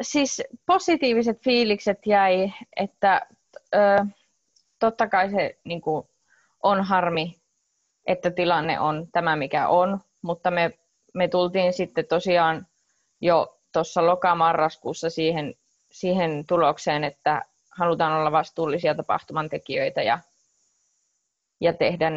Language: Finnish